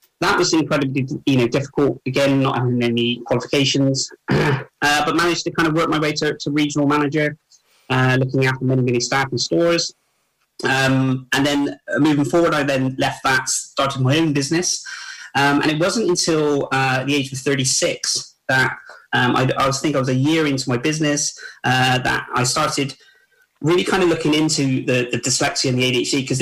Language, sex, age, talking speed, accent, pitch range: English, male, 20-39, 190 wpm, British, 130-150 Hz